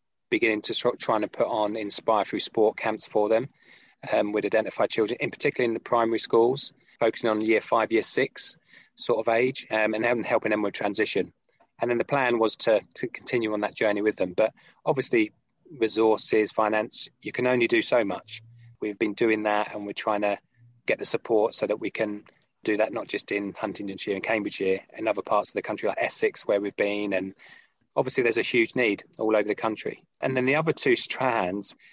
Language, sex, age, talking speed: English, male, 20-39, 205 wpm